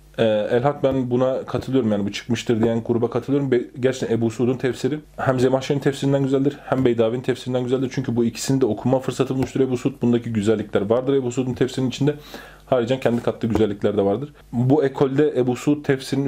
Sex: male